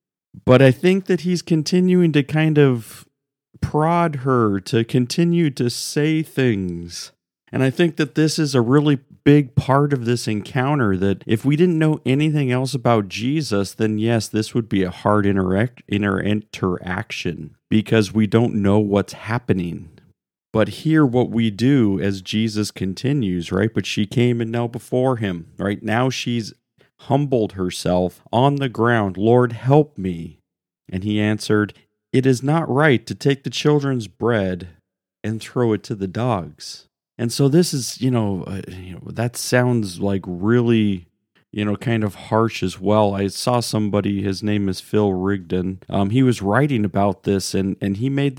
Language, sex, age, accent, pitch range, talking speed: English, male, 40-59, American, 100-135 Hz, 170 wpm